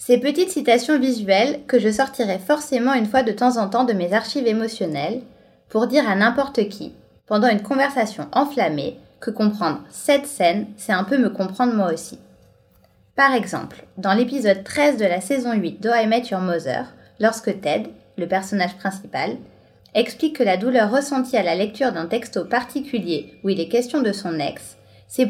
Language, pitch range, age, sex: French, 195-250 Hz, 20-39, female